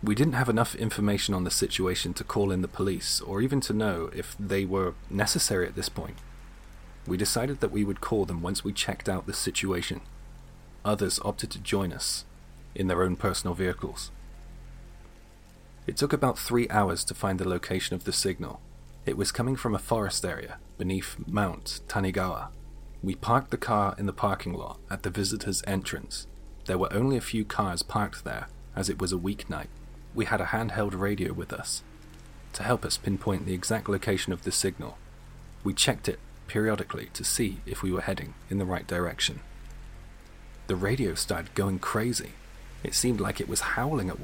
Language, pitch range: English, 95-110 Hz